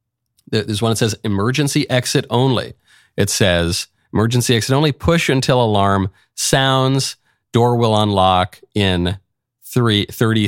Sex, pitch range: male, 105-150 Hz